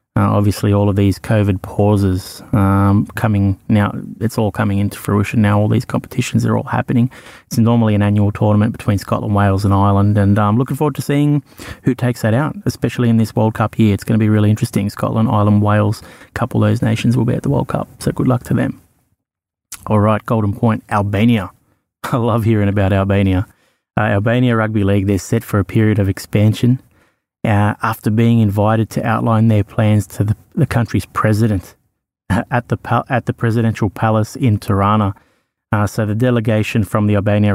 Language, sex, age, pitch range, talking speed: English, male, 20-39, 100-115 Hz, 195 wpm